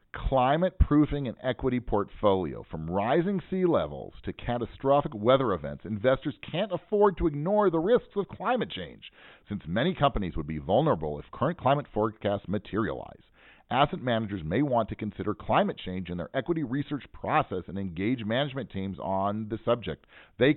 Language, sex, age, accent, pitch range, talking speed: English, male, 40-59, American, 95-145 Hz, 160 wpm